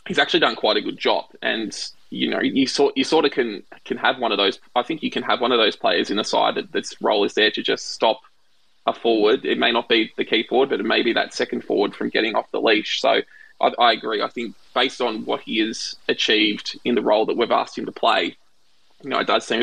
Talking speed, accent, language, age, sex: 270 wpm, Australian, English, 20-39, male